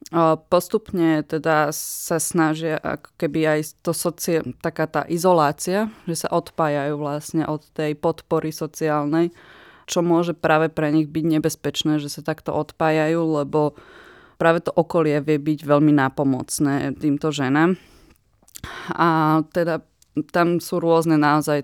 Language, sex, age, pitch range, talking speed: Slovak, female, 20-39, 145-160 Hz, 135 wpm